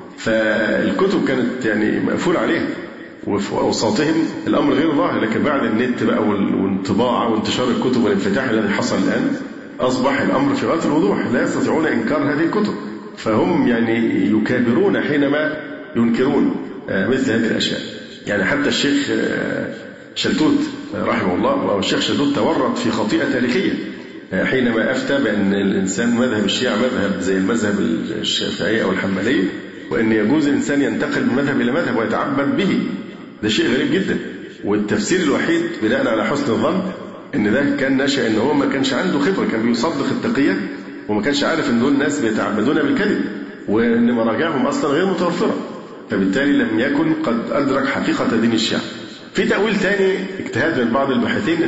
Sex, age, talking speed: male, 50-69, 145 wpm